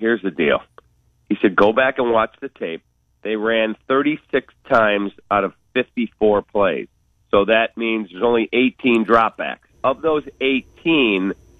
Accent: American